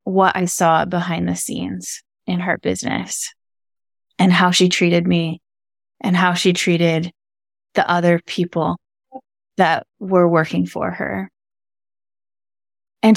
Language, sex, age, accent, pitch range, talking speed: English, female, 20-39, American, 165-215 Hz, 125 wpm